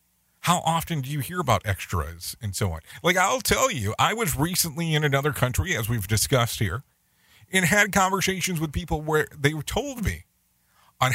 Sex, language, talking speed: male, English, 185 wpm